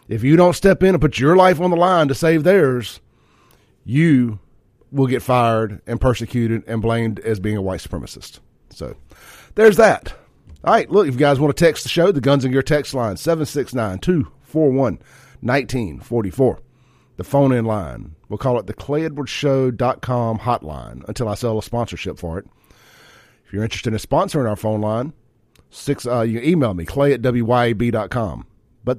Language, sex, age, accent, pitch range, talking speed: English, male, 40-59, American, 110-145 Hz, 190 wpm